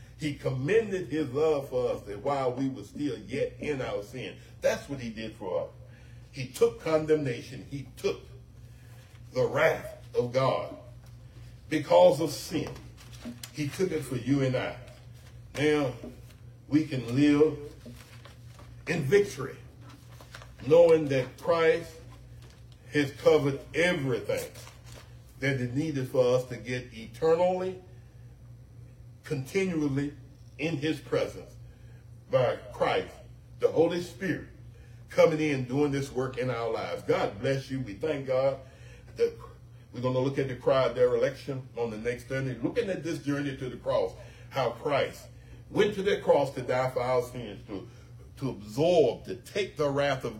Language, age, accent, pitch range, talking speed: English, 60-79, American, 120-150 Hz, 145 wpm